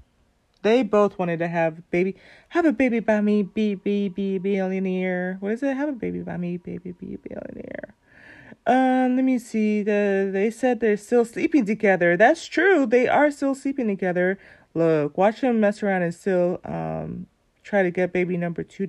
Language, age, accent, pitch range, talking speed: English, 30-49, American, 180-225 Hz, 185 wpm